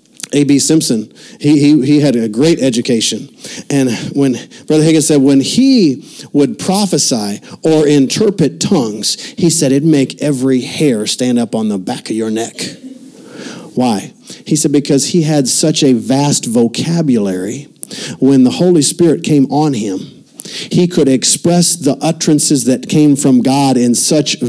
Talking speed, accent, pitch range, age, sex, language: 155 wpm, American, 135-185 Hz, 50-69, male, English